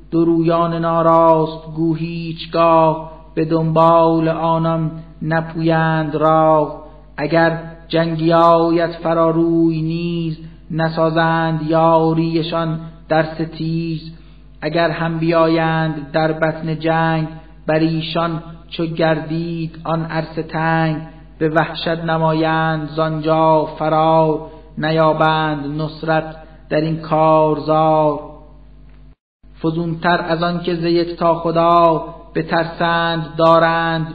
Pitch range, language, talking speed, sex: 160-165 Hz, Persian, 85 wpm, male